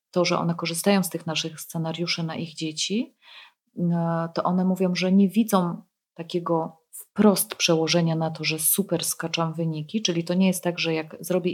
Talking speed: 175 wpm